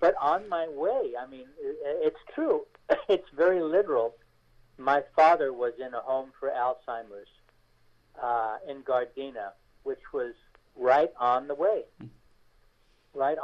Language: English